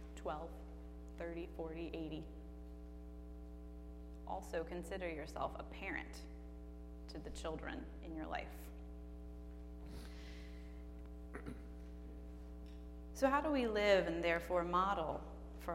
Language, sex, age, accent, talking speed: English, female, 20-39, American, 90 wpm